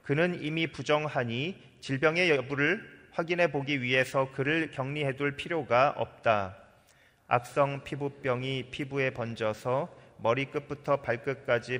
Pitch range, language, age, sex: 125-155 Hz, Korean, 40-59, male